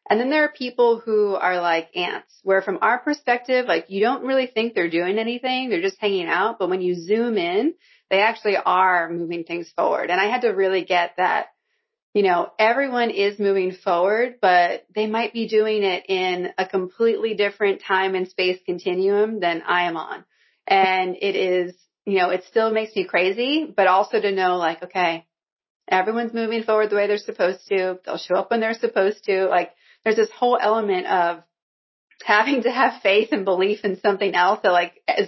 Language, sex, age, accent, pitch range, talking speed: English, female, 30-49, American, 185-230 Hz, 195 wpm